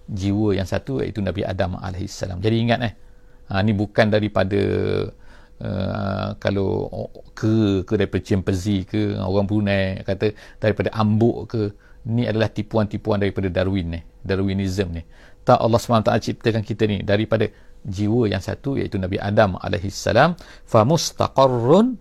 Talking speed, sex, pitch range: 140 wpm, male, 100-125 Hz